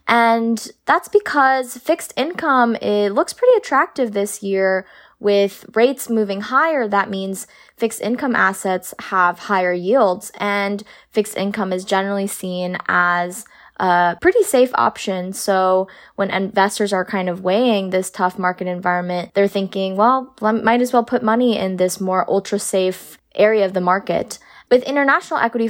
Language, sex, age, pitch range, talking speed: English, female, 20-39, 185-230 Hz, 150 wpm